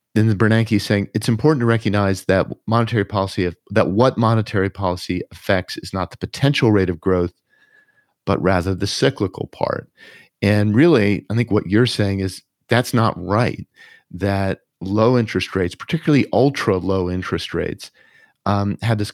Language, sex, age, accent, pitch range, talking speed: English, male, 50-69, American, 95-115 Hz, 165 wpm